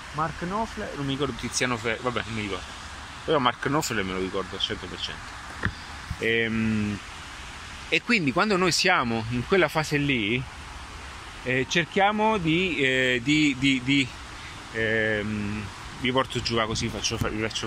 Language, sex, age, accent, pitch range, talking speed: Italian, male, 30-49, native, 110-155 Hz, 150 wpm